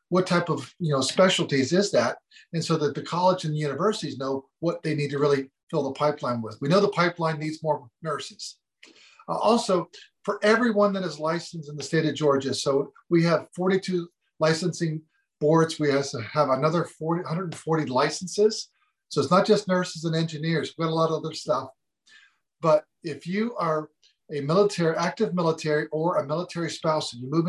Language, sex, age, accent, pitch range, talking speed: English, male, 40-59, American, 140-175 Hz, 190 wpm